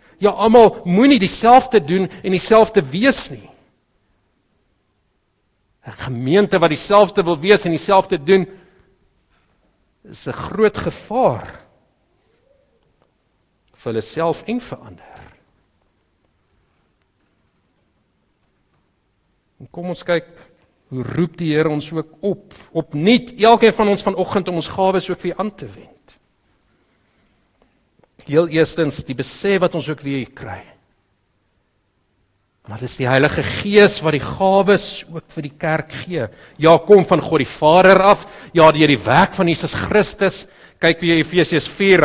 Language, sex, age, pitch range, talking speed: English, male, 50-69, 135-195 Hz, 135 wpm